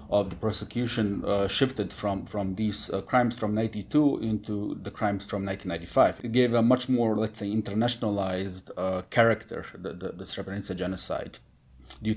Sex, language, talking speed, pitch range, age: male, English, 160 wpm, 100-120 Hz, 30-49